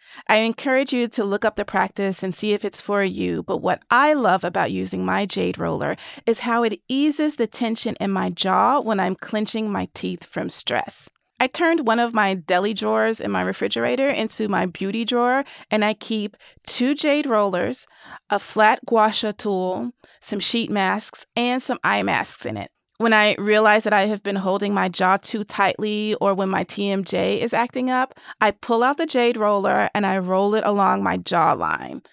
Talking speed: 195 wpm